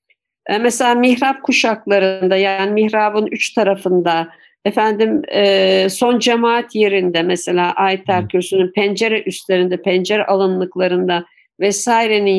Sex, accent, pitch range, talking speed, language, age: female, Turkish, 190-240 Hz, 90 wpm, English, 50-69